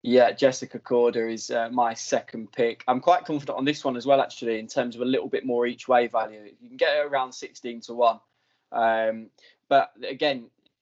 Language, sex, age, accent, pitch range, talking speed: English, male, 20-39, British, 115-130 Hz, 210 wpm